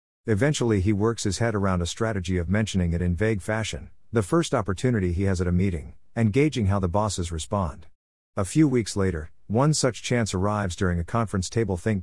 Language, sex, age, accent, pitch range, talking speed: English, male, 50-69, American, 90-115 Hz, 205 wpm